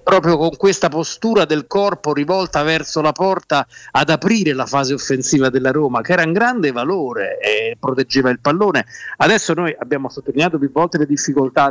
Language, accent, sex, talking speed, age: Italian, native, male, 180 wpm, 50-69